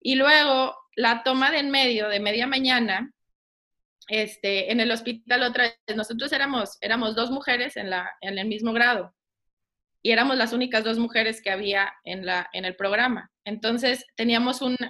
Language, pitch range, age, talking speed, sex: Spanish, 205-250 Hz, 20-39, 175 wpm, female